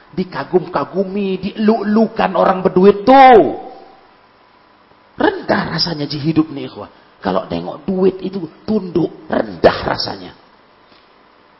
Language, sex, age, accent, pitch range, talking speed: Indonesian, male, 40-59, native, 160-265 Hz, 95 wpm